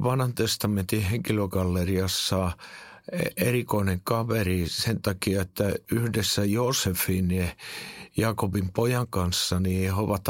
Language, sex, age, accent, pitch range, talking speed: Finnish, male, 50-69, native, 95-115 Hz, 95 wpm